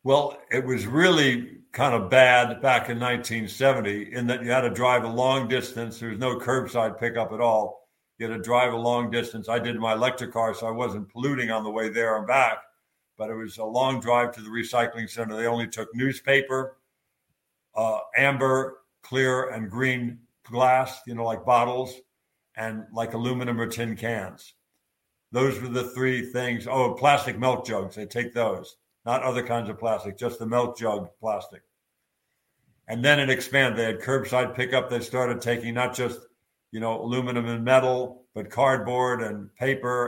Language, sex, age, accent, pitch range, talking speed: English, male, 60-79, American, 115-125 Hz, 185 wpm